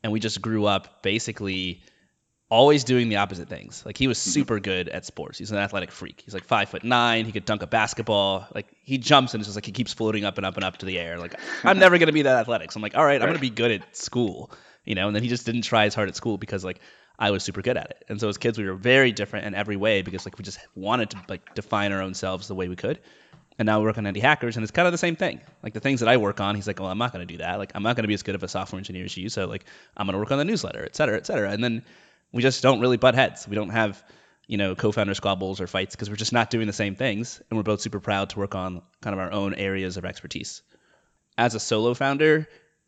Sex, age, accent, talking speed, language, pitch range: male, 20-39, American, 300 wpm, English, 95-115 Hz